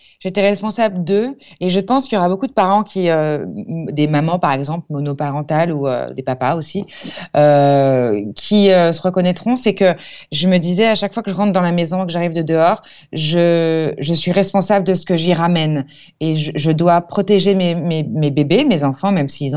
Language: French